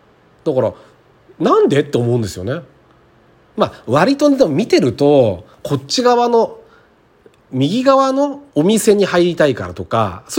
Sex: male